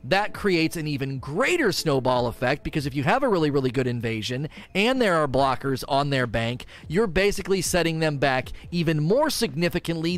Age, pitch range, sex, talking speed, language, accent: 30-49, 135-175 Hz, male, 185 wpm, English, American